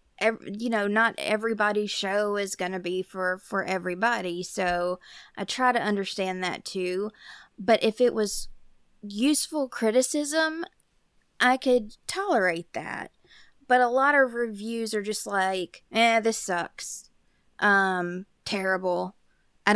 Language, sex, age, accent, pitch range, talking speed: English, female, 20-39, American, 185-230 Hz, 130 wpm